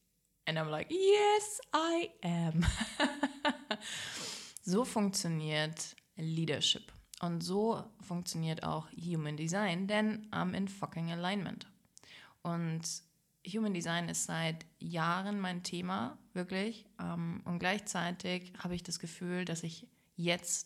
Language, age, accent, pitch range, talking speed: German, 20-39, German, 165-195 Hz, 110 wpm